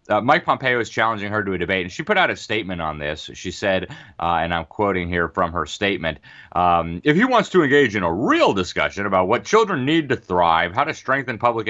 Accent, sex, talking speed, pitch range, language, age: American, male, 240 wpm, 90-120 Hz, English, 30-49